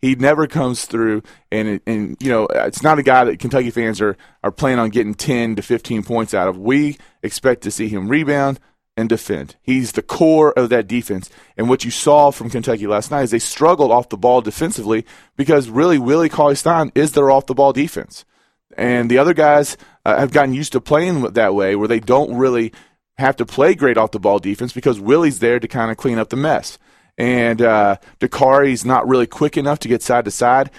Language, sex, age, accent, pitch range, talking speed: English, male, 30-49, American, 110-140 Hz, 205 wpm